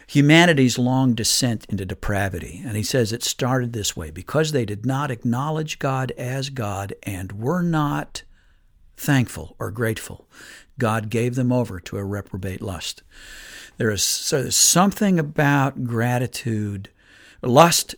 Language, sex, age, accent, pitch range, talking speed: English, male, 60-79, American, 105-140 Hz, 135 wpm